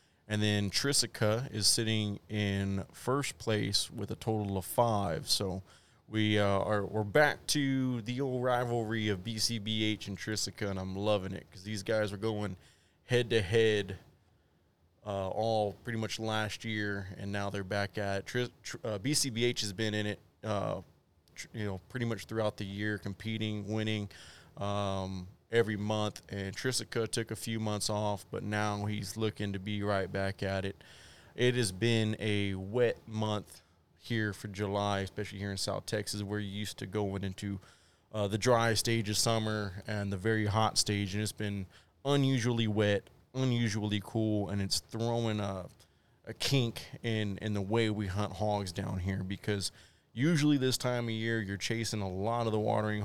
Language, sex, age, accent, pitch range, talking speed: English, male, 30-49, American, 100-115 Hz, 170 wpm